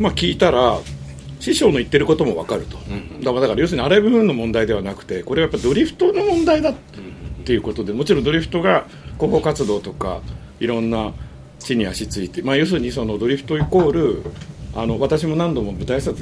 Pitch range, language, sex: 115-170 Hz, Japanese, male